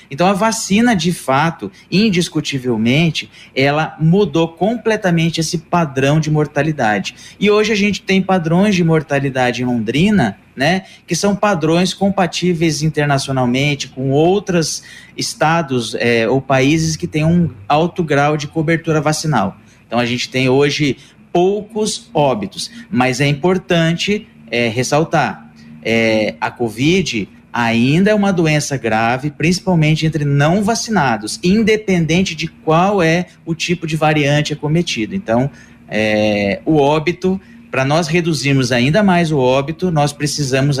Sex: male